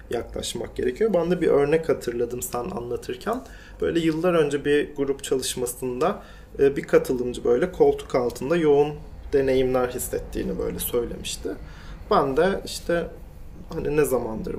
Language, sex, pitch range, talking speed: Turkish, male, 125-160 Hz, 130 wpm